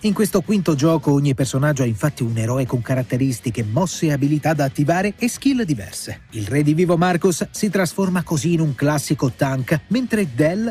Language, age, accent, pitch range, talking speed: Italian, 30-49, native, 130-180 Hz, 190 wpm